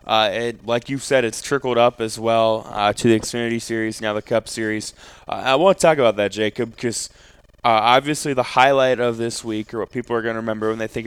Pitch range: 110-125 Hz